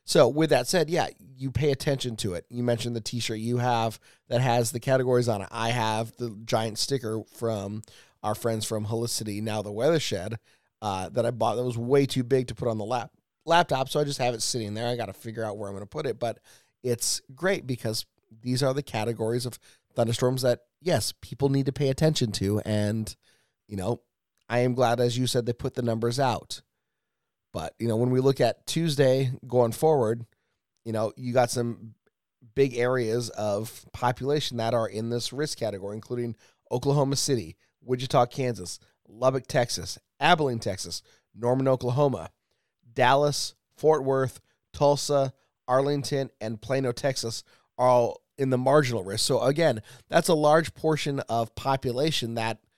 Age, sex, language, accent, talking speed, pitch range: 30-49, male, English, American, 180 wpm, 110-135 Hz